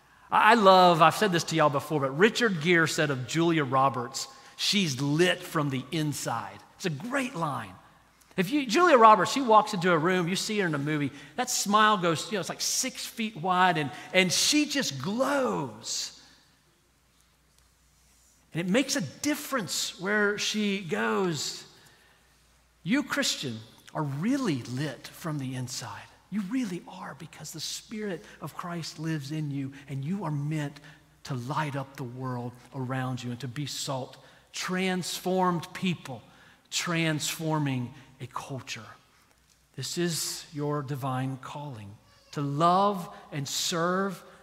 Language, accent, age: English, American, 40-59